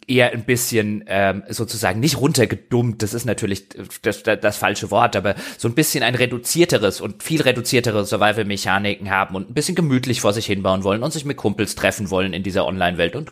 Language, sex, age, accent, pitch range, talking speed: German, male, 30-49, German, 105-130 Hz, 200 wpm